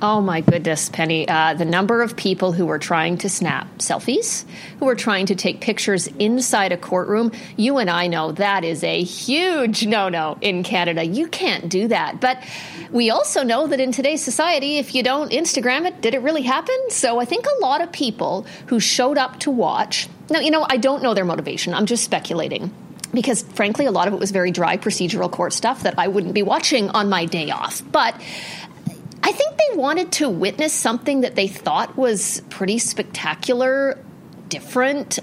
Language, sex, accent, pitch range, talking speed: English, female, American, 185-250 Hz, 195 wpm